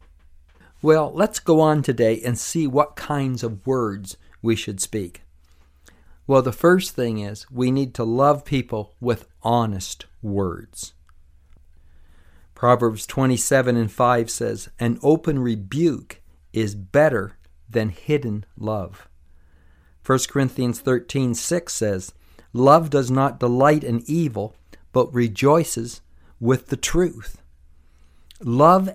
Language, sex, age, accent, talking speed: English, male, 50-69, American, 120 wpm